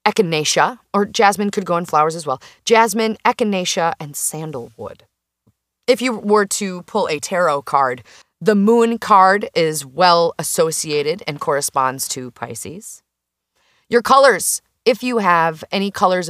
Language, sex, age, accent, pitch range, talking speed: English, female, 30-49, American, 150-190 Hz, 140 wpm